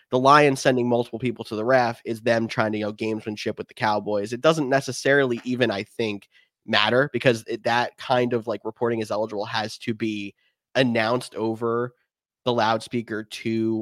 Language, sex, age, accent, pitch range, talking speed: English, male, 20-39, American, 105-125 Hz, 185 wpm